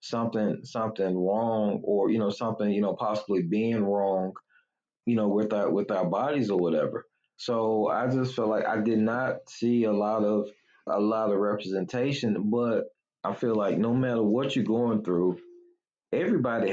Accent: American